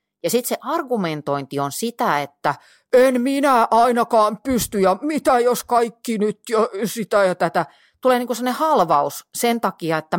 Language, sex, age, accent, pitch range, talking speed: Finnish, female, 40-59, native, 150-225 Hz, 155 wpm